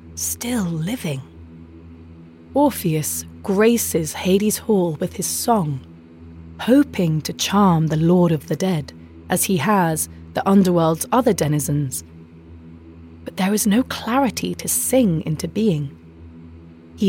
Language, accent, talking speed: English, British, 120 wpm